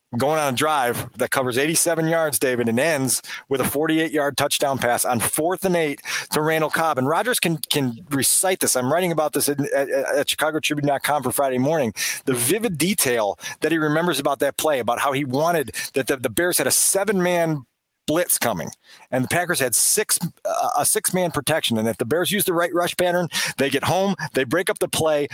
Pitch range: 140-185 Hz